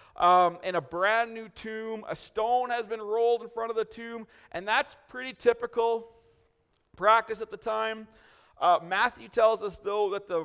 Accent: American